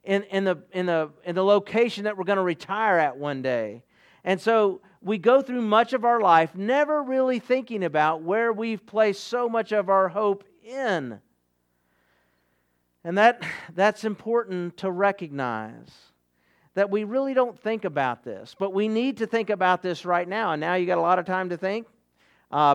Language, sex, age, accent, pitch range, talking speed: English, male, 50-69, American, 160-210 Hz, 185 wpm